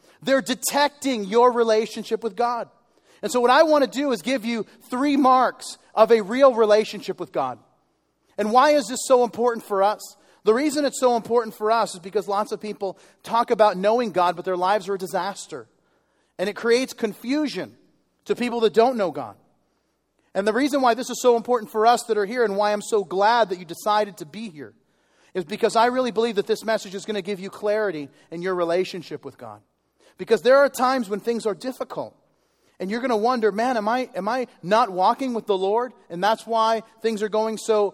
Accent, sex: American, male